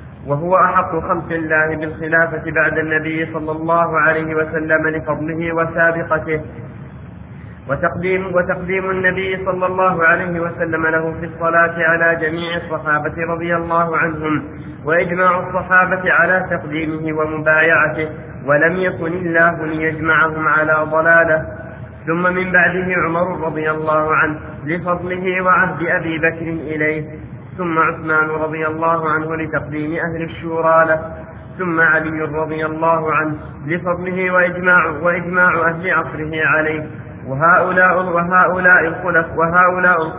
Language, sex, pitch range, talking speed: Arabic, male, 155-175 Hz, 110 wpm